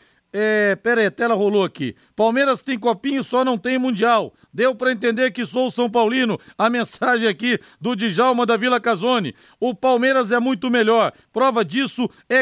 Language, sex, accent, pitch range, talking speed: Portuguese, male, Brazilian, 200-240 Hz, 185 wpm